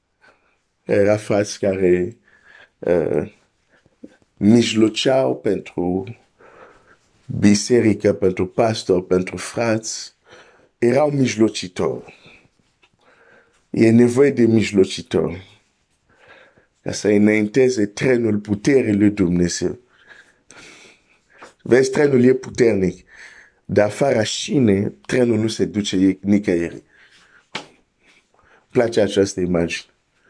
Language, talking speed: Romanian, 75 wpm